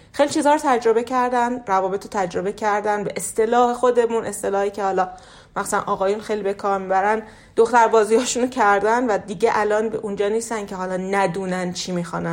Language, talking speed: Persian, 165 wpm